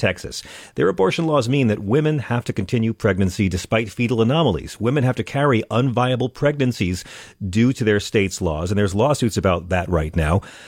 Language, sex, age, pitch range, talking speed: English, male, 40-59, 100-130 Hz, 180 wpm